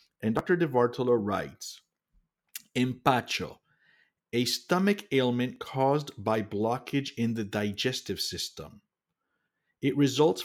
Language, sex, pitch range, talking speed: English, male, 110-155 Hz, 100 wpm